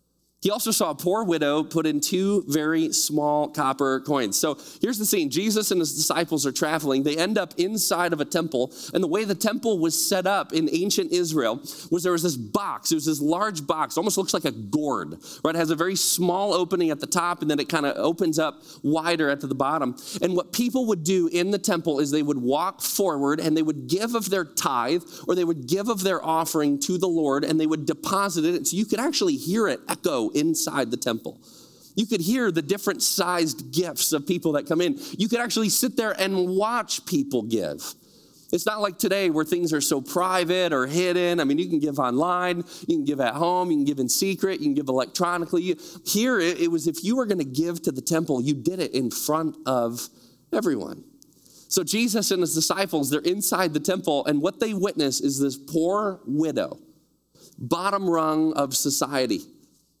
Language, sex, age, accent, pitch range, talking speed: English, male, 30-49, American, 150-195 Hz, 215 wpm